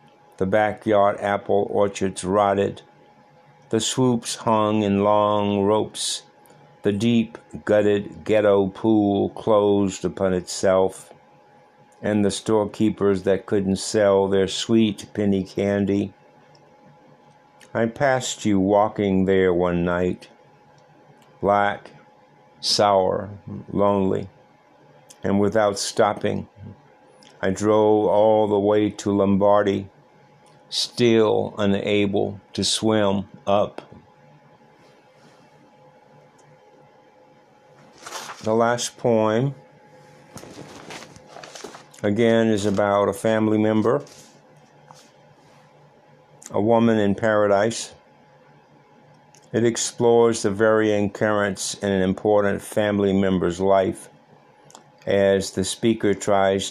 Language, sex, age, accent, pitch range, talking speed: English, male, 60-79, American, 95-110 Hz, 85 wpm